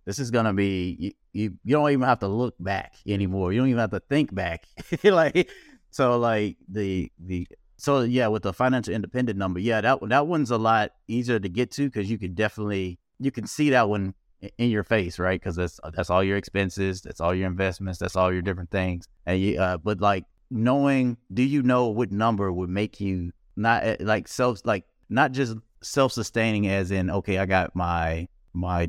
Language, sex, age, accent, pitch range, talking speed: English, male, 30-49, American, 95-120 Hz, 210 wpm